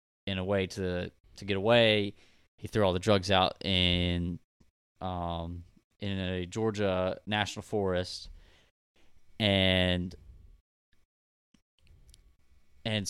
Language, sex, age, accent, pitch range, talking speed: English, male, 20-39, American, 90-110 Hz, 100 wpm